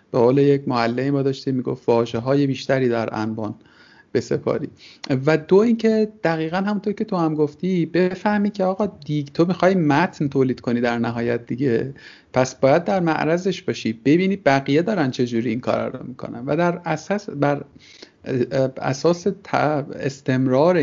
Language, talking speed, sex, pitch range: Persian, 155 wpm, male, 120-155 Hz